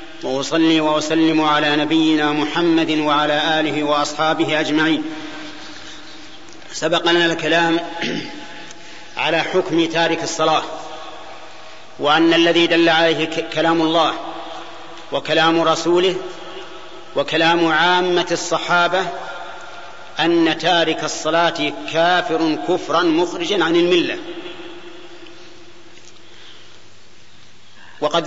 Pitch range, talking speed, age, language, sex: 155-175 Hz, 75 wpm, 40-59, Arabic, male